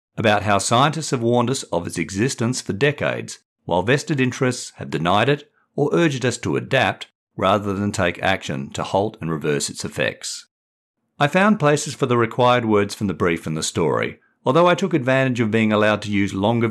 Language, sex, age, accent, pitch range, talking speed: English, male, 50-69, Australian, 100-135 Hz, 200 wpm